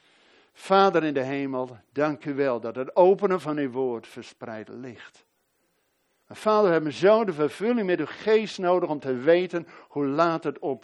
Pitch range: 120-175 Hz